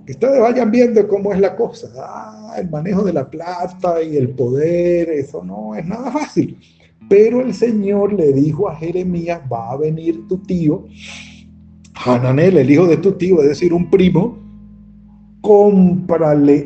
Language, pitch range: Spanish, 140-190 Hz